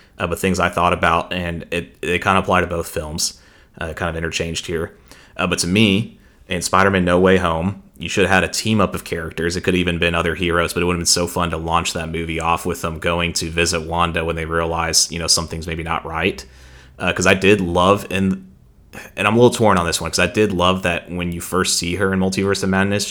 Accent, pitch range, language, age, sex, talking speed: American, 85-90 Hz, English, 30-49, male, 260 wpm